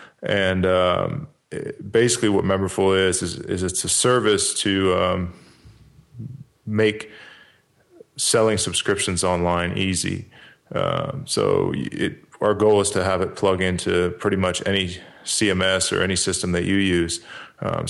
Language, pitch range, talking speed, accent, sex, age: English, 90-100 Hz, 130 wpm, American, male, 20-39